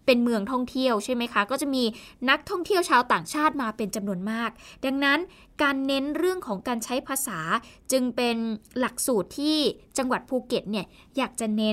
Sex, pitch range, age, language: female, 215-280 Hz, 20-39, Thai